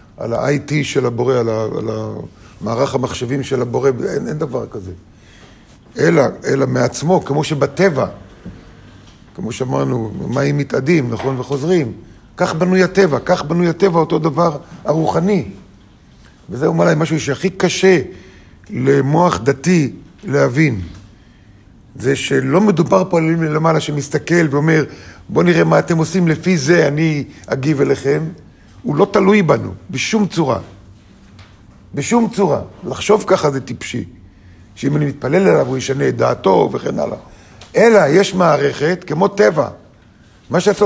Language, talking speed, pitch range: Hebrew, 135 wpm, 115-180 Hz